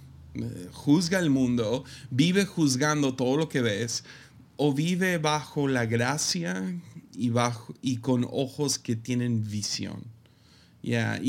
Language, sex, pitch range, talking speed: Spanish, male, 120-150 Hz, 120 wpm